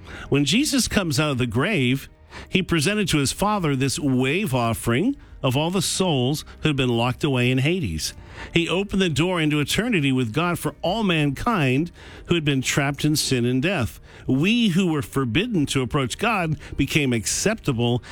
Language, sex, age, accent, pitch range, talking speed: English, male, 50-69, American, 125-175 Hz, 180 wpm